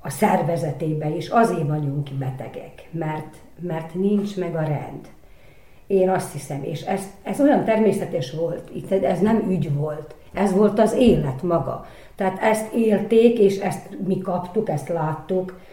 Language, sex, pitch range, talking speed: Hungarian, female, 155-200 Hz, 150 wpm